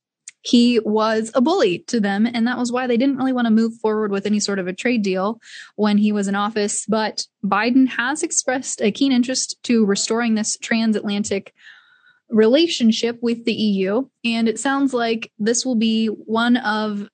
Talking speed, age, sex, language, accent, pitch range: 185 wpm, 10-29, female, English, American, 205-245 Hz